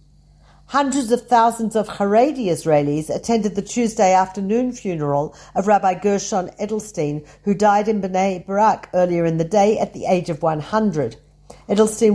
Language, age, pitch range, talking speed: Hebrew, 50-69, 165-215 Hz, 150 wpm